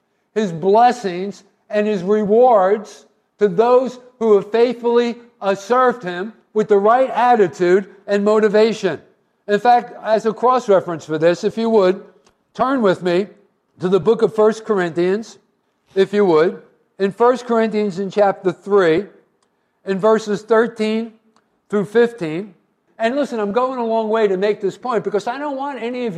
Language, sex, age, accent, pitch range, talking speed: English, male, 50-69, American, 200-240 Hz, 160 wpm